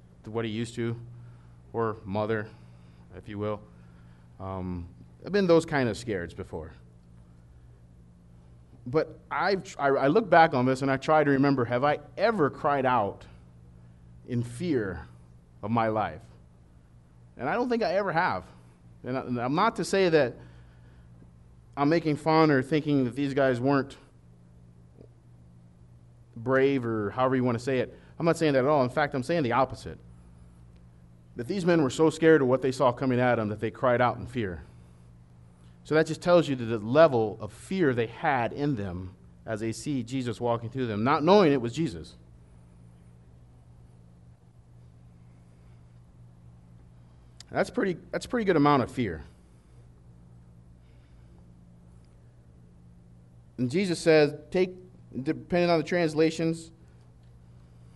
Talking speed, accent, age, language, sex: 150 wpm, American, 30-49, English, male